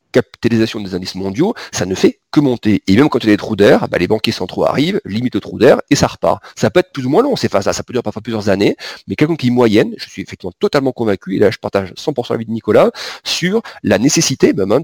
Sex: male